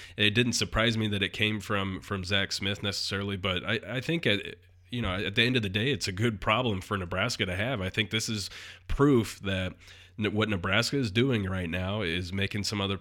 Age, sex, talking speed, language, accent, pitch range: 30-49, male, 225 wpm, English, American, 95-110 Hz